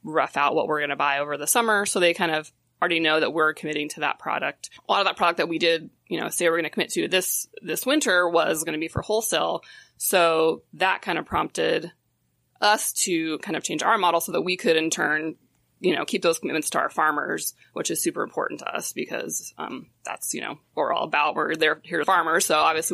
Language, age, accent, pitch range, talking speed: English, 20-39, American, 150-175 Hz, 245 wpm